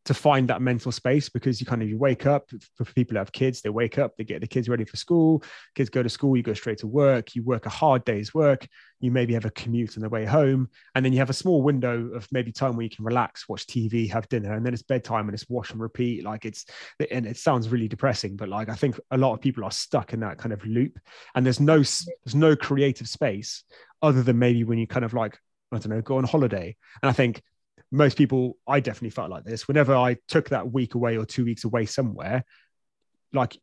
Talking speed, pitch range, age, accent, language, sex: 255 wpm, 115-140 Hz, 20-39, British, English, male